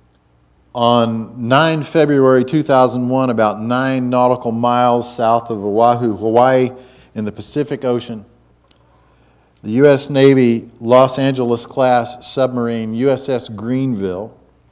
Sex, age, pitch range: male, 50-69, 105-130 Hz